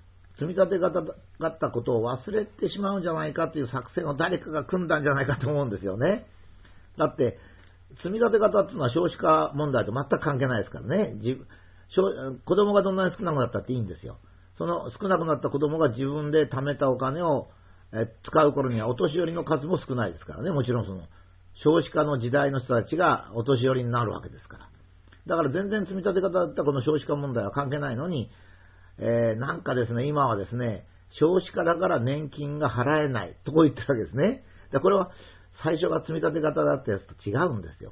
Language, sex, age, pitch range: Japanese, male, 50-69, 100-155 Hz